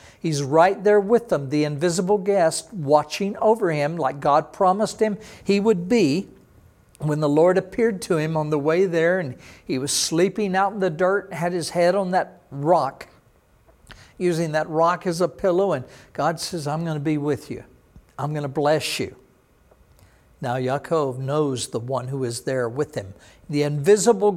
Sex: male